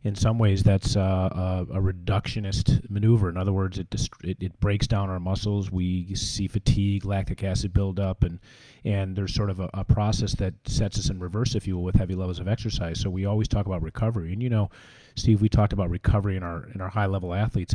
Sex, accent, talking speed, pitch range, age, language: male, American, 230 wpm, 90-110 Hz, 30-49, English